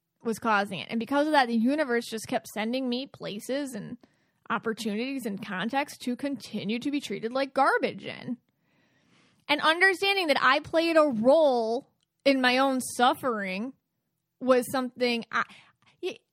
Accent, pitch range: American, 215-275 Hz